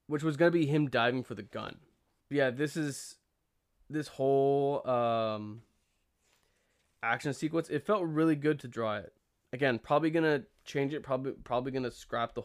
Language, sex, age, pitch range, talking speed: English, male, 20-39, 115-140 Hz, 185 wpm